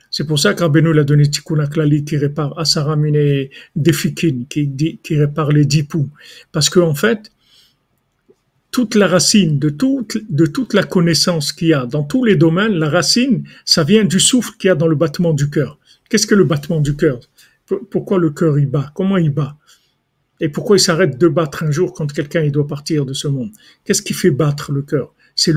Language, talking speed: French, 210 wpm